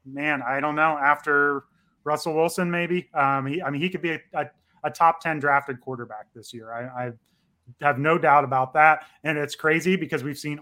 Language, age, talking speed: English, 30-49, 200 wpm